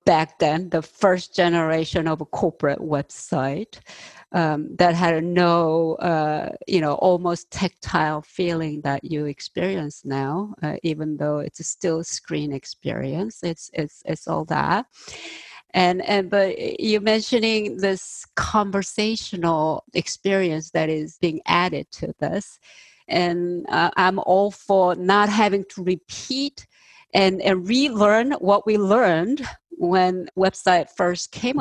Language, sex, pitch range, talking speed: English, female, 160-195 Hz, 135 wpm